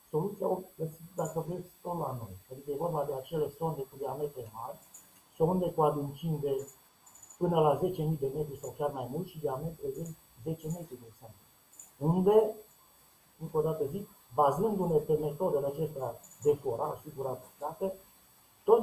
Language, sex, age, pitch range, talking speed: Romanian, male, 60-79, 140-170 Hz, 155 wpm